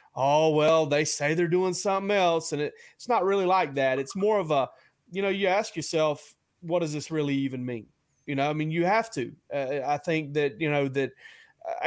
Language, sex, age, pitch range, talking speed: English, male, 30-49, 135-160 Hz, 220 wpm